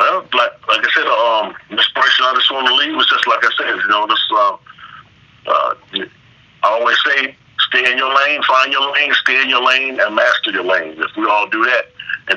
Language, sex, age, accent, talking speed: English, male, 40-59, American, 230 wpm